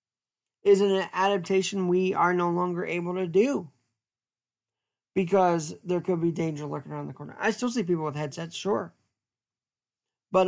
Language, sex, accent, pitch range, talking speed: English, male, American, 165-205 Hz, 155 wpm